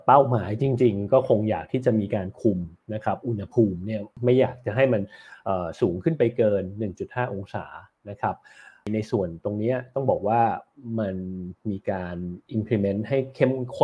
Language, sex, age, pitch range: Thai, male, 30-49, 105-125 Hz